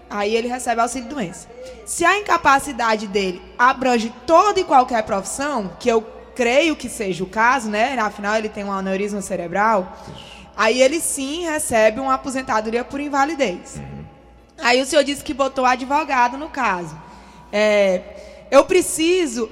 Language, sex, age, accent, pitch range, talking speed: Portuguese, female, 20-39, Brazilian, 225-310 Hz, 145 wpm